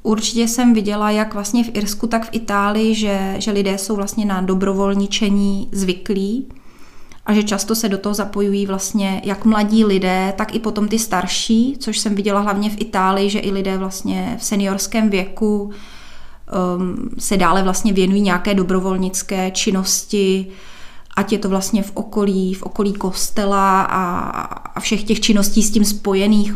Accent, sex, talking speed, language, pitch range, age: native, female, 160 wpm, Czech, 190-215 Hz, 20-39